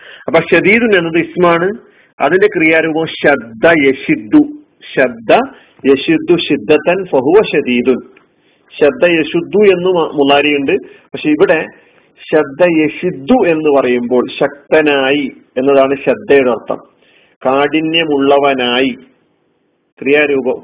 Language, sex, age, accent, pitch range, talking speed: Malayalam, male, 40-59, native, 125-160 Hz, 75 wpm